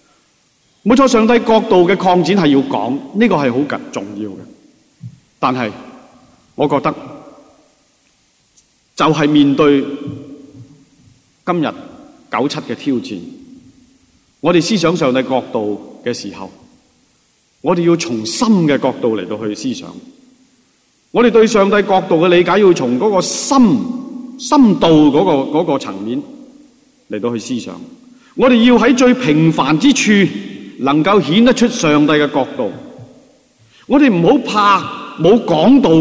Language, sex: Chinese, male